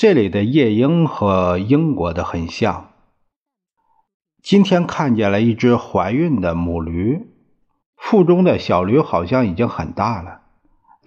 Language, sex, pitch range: Chinese, male, 95-155 Hz